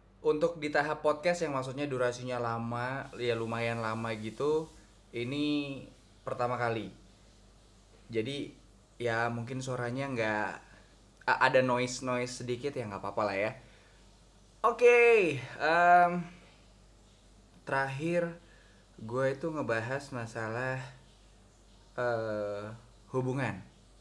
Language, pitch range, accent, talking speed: Indonesian, 105-130 Hz, native, 95 wpm